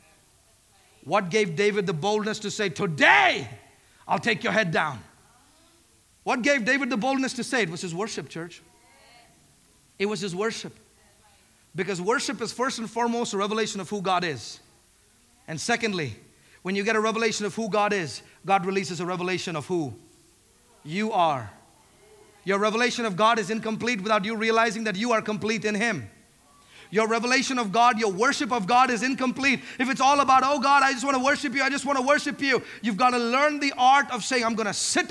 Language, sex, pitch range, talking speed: English, male, 205-270 Hz, 195 wpm